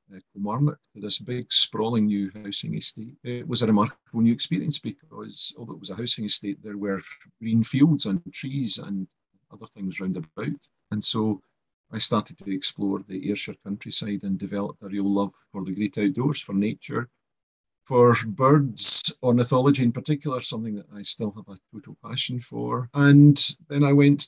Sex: male